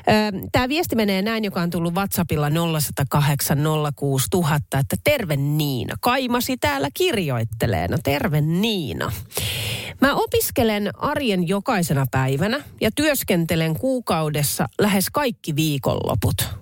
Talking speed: 105 wpm